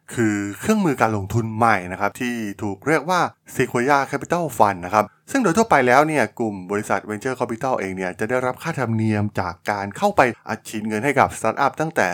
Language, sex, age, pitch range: Thai, male, 20-39, 105-140 Hz